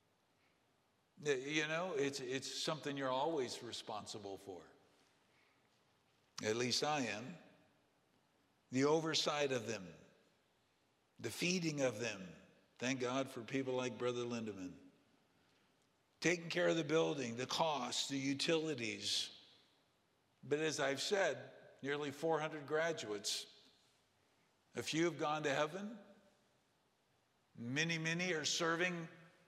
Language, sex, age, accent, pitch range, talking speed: English, male, 50-69, American, 130-165 Hz, 110 wpm